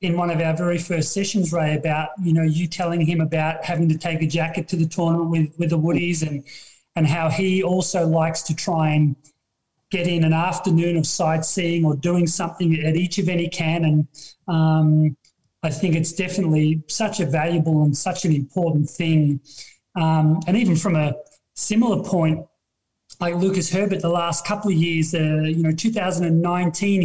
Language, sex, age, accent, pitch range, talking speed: English, male, 30-49, Australian, 160-200 Hz, 185 wpm